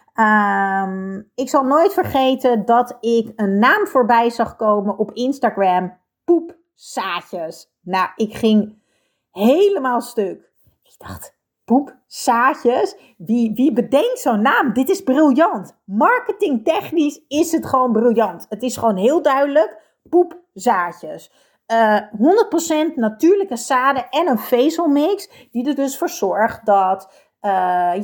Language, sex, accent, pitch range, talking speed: Dutch, female, Dutch, 210-305 Hz, 120 wpm